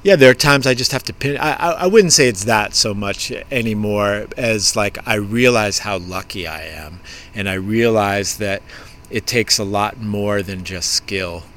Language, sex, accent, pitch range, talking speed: English, male, American, 95-110 Hz, 200 wpm